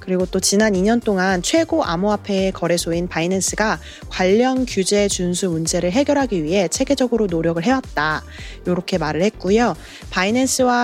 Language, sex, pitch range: Korean, female, 180-240 Hz